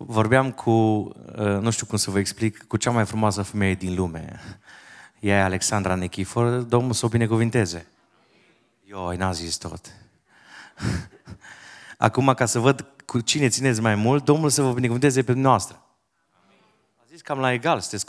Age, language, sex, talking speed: 30-49, Romanian, male, 160 wpm